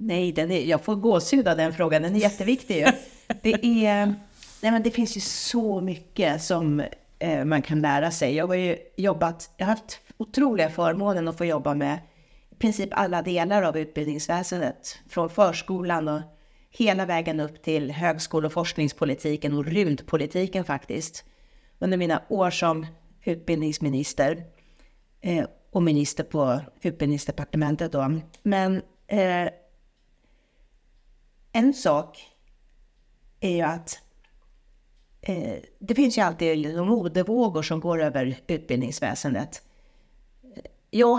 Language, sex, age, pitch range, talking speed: Swedish, female, 40-59, 150-200 Hz, 130 wpm